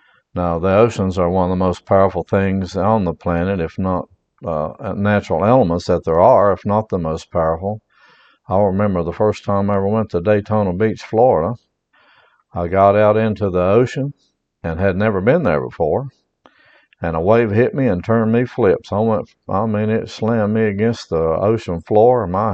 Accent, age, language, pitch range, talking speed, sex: American, 60-79, English, 90-110 Hz, 190 wpm, male